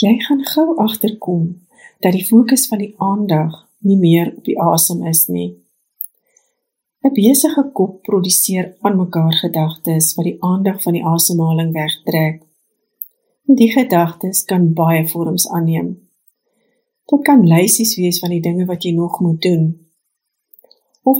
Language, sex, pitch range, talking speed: English, female, 165-235 Hz, 140 wpm